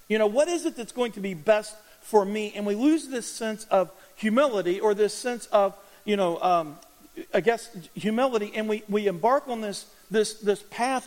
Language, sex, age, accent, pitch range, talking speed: English, male, 50-69, American, 205-255 Hz, 205 wpm